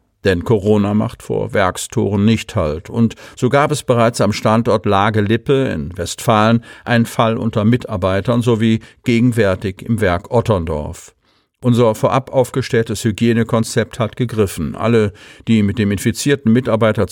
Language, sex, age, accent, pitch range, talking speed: German, male, 50-69, German, 100-120 Hz, 135 wpm